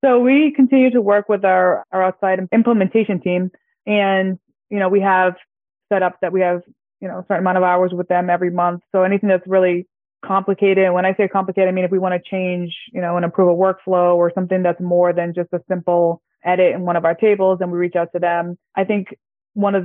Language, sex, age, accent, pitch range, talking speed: English, female, 20-39, American, 180-195 Hz, 235 wpm